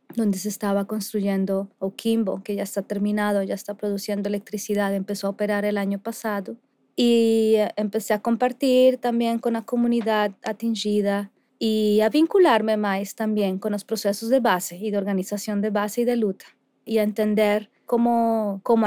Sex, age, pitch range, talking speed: female, 20-39, 205-245 Hz, 160 wpm